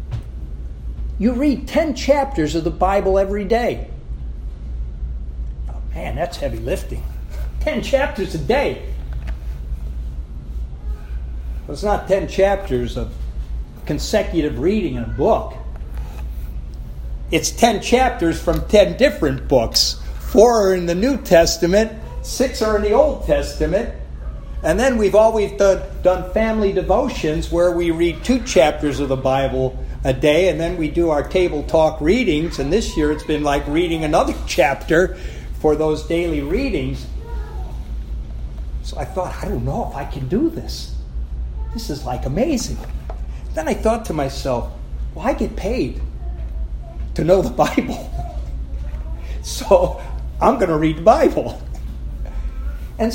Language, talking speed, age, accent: English, 140 wpm, 60-79, American